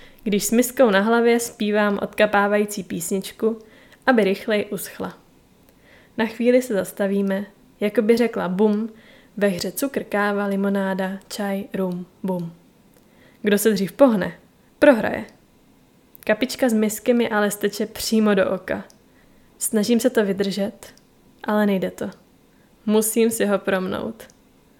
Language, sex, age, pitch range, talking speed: Czech, female, 10-29, 195-230 Hz, 125 wpm